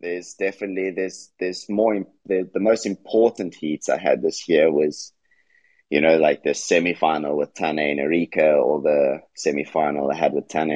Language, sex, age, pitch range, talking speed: English, male, 30-49, 75-90 Hz, 185 wpm